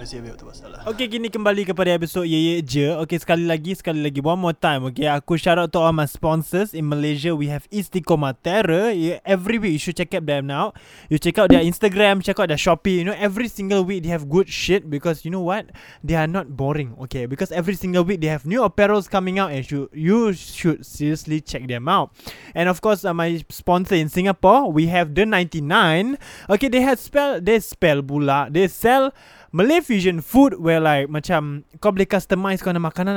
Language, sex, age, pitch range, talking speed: Malay, male, 20-39, 150-195 Hz, 205 wpm